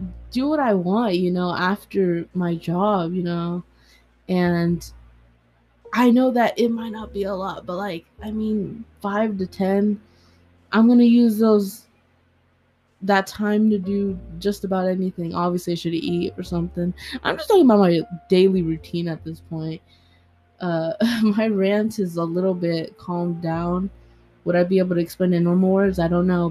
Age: 20-39